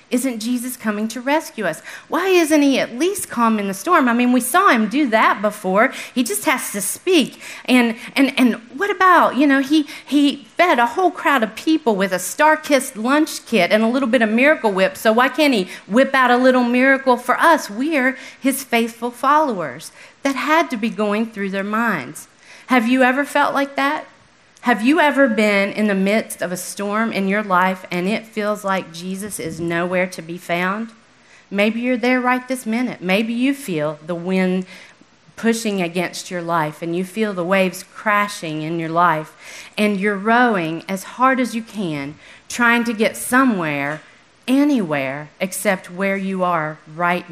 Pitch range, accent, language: 190-270 Hz, American, English